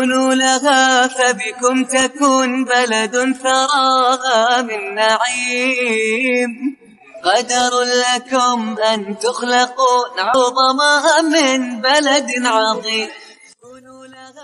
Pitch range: 205-255 Hz